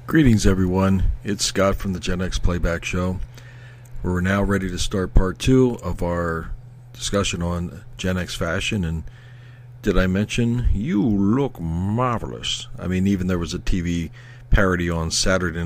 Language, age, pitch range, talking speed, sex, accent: English, 40-59, 85-120 Hz, 155 wpm, male, American